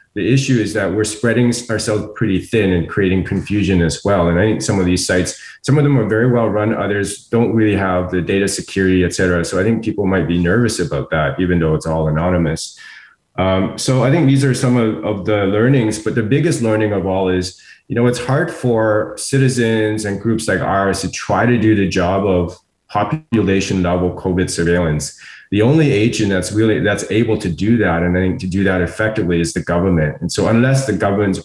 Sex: male